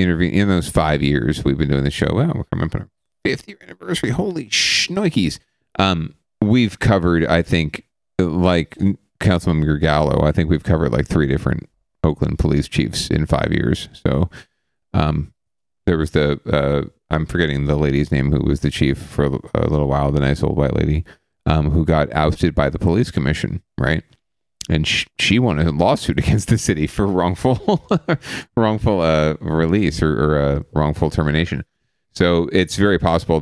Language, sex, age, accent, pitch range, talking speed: English, male, 40-59, American, 75-85 Hz, 170 wpm